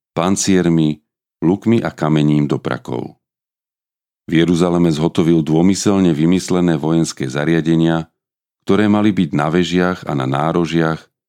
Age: 40-59